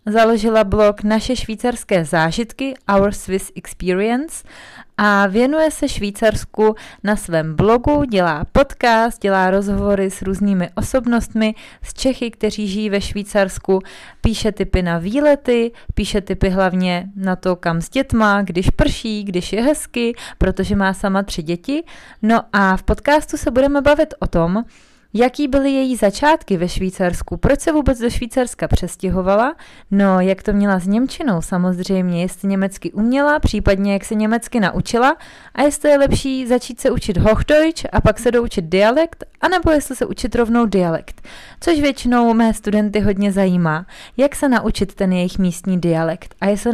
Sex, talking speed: female, 155 wpm